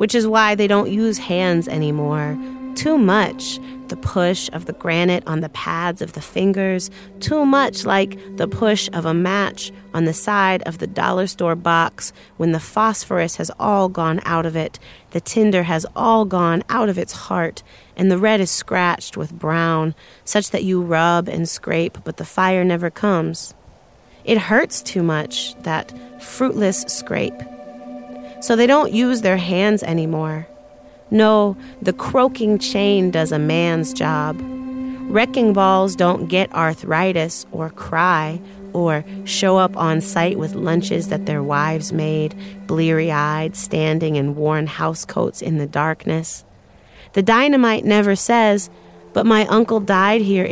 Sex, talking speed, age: female, 155 wpm, 30-49